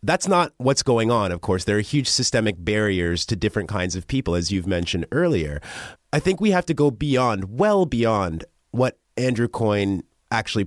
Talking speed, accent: 190 wpm, American